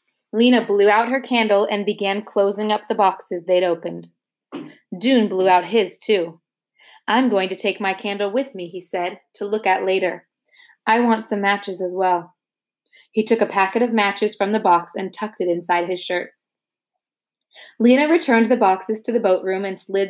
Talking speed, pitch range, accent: 190 wpm, 180-225 Hz, American